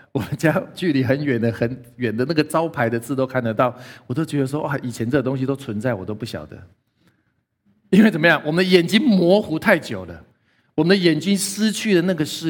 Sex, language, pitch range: male, Chinese, 125-190 Hz